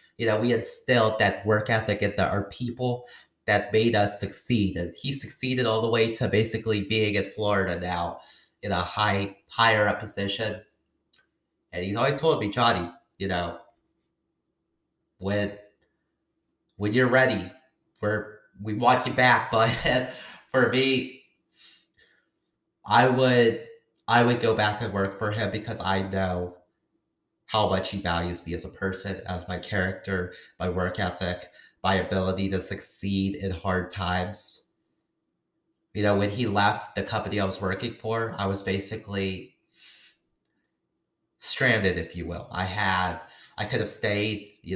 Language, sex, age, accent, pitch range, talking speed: English, male, 30-49, American, 95-115 Hz, 145 wpm